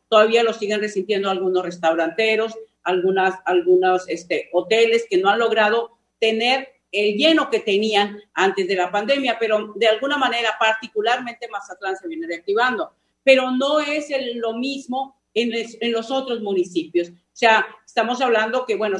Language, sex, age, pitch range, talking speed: Spanish, female, 50-69, 205-250 Hz, 160 wpm